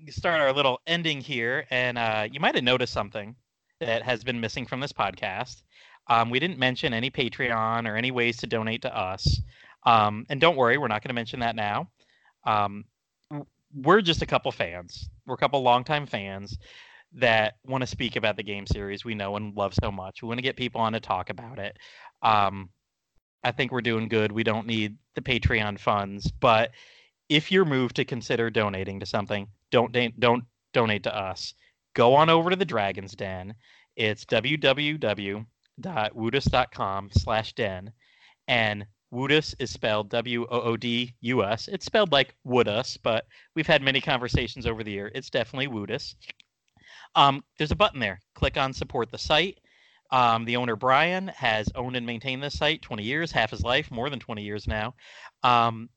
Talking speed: 180 wpm